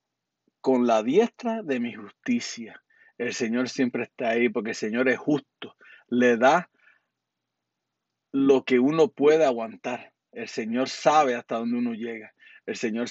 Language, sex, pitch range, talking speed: Spanish, male, 125-175 Hz, 145 wpm